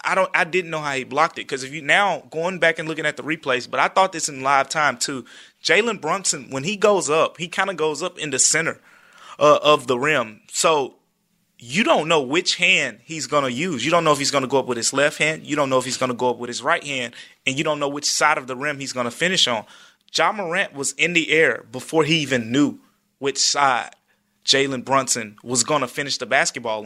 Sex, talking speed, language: male, 260 wpm, English